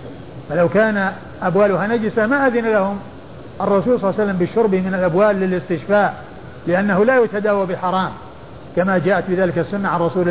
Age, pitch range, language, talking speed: 50-69, 180-210 Hz, Arabic, 150 wpm